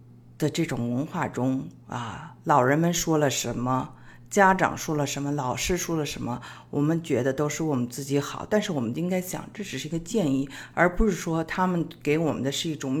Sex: female